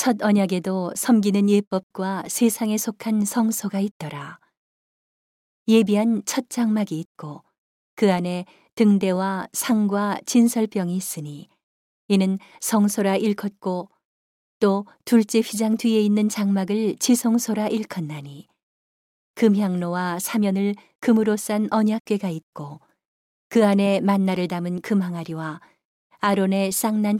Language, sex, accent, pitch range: Korean, female, native, 185-220 Hz